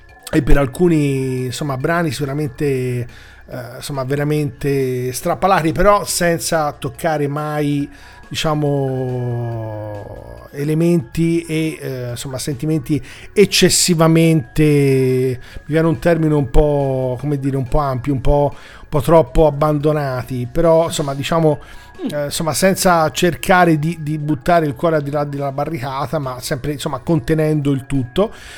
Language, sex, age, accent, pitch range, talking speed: Italian, male, 40-59, native, 135-160 Hz, 105 wpm